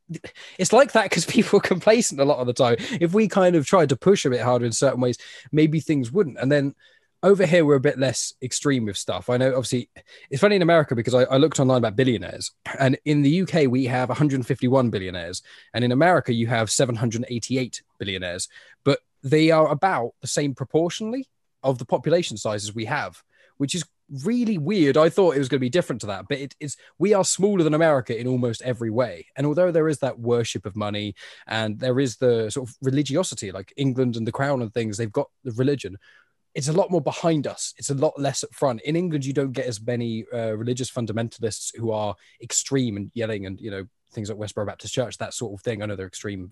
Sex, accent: male, British